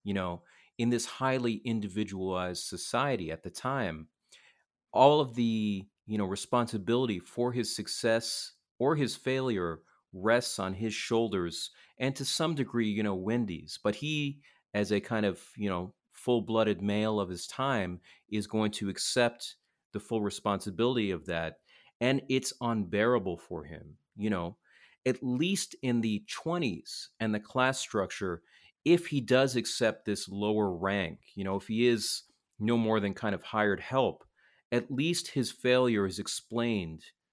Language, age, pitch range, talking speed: English, 30-49, 100-120 Hz, 155 wpm